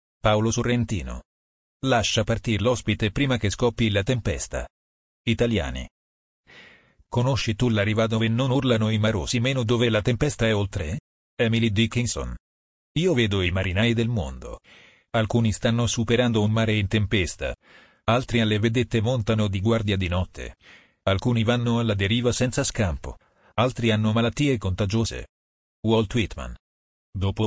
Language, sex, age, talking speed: Italian, male, 40-59, 135 wpm